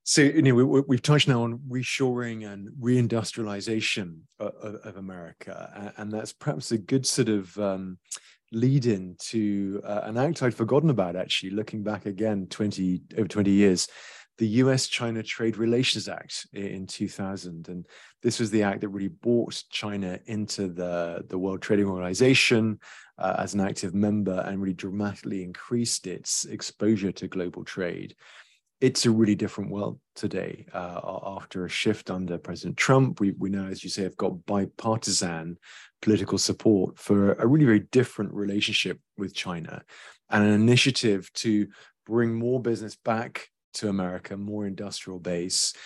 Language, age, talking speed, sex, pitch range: English, 30-49, 160 wpm, male, 95-115 Hz